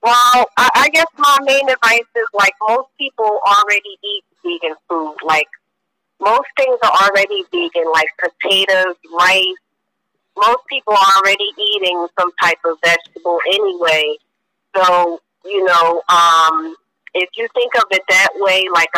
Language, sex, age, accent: English, female, 30-49, American